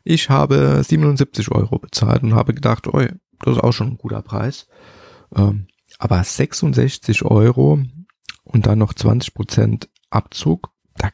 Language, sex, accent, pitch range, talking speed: German, male, German, 100-125 Hz, 135 wpm